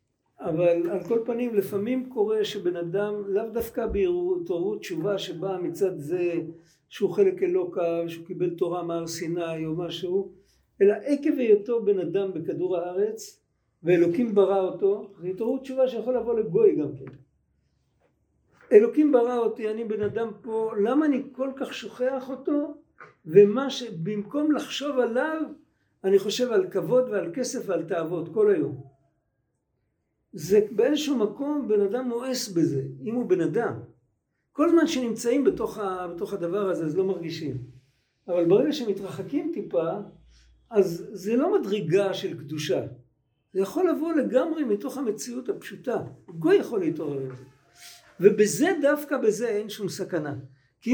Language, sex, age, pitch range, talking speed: Hebrew, male, 60-79, 180-260 Hz, 140 wpm